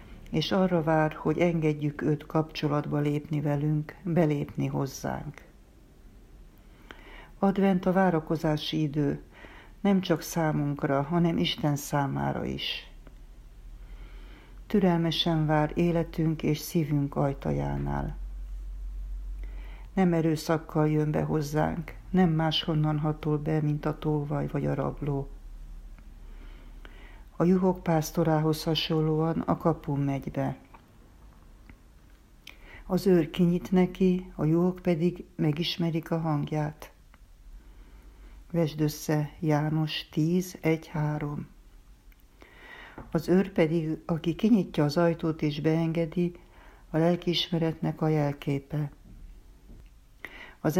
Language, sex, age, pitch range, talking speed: Hungarian, female, 60-79, 145-170 Hz, 95 wpm